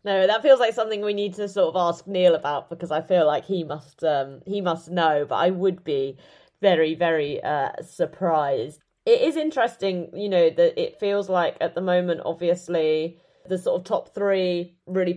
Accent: British